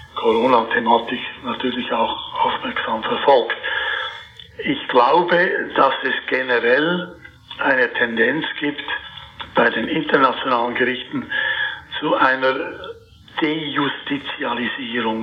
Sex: male